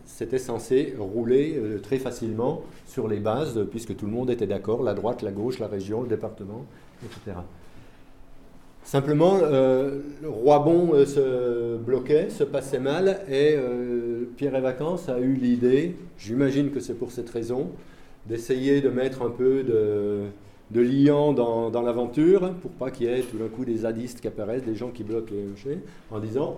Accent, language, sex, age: French, French, male, 40-59